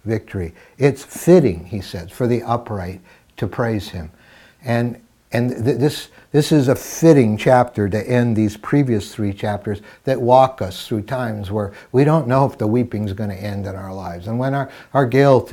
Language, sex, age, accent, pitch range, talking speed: English, male, 60-79, American, 105-130 Hz, 190 wpm